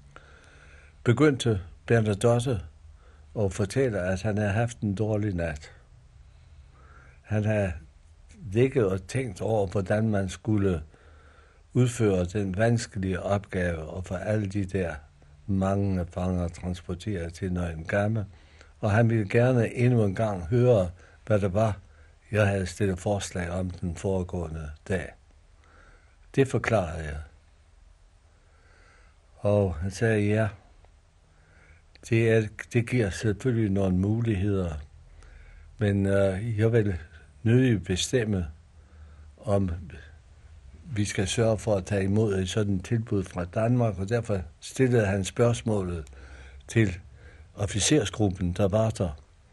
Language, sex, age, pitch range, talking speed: Danish, male, 60-79, 80-105 Hz, 120 wpm